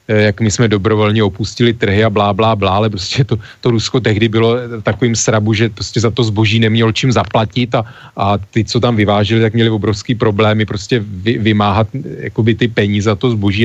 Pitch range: 105-120 Hz